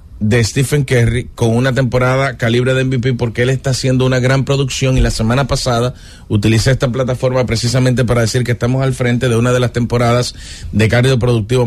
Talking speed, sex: 195 wpm, male